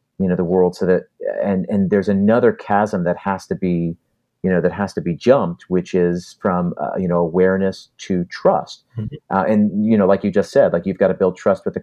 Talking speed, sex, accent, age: 240 wpm, male, American, 40-59